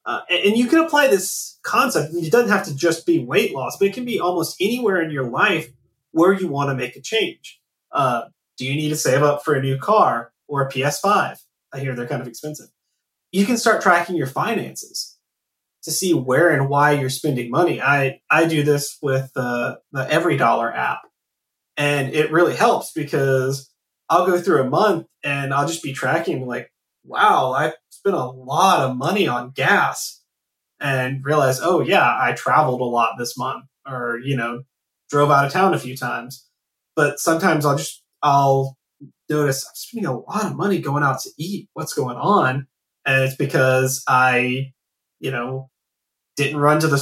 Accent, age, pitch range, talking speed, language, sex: American, 30-49, 130-165 Hz, 190 wpm, English, male